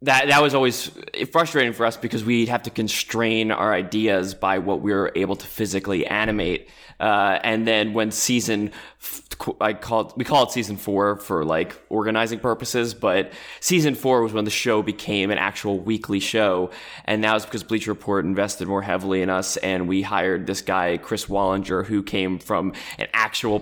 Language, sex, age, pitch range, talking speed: English, male, 20-39, 95-115 Hz, 185 wpm